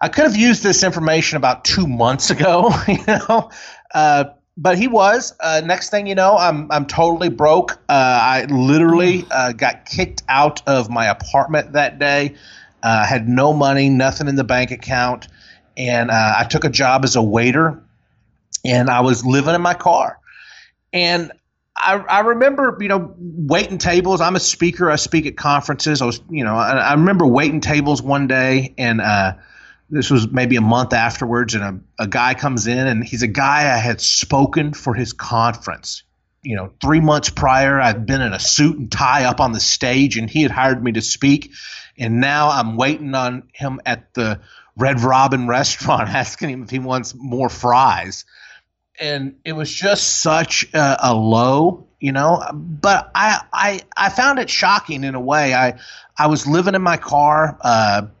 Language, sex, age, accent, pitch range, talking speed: English, male, 30-49, American, 125-160 Hz, 185 wpm